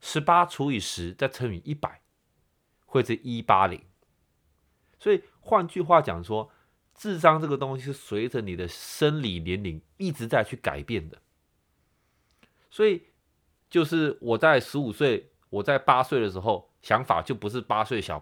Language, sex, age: Chinese, male, 30-49